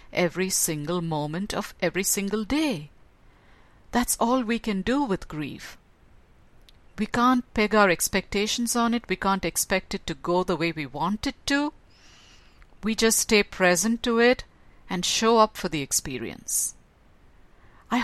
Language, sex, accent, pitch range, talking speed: English, female, Indian, 170-225 Hz, 155 wpm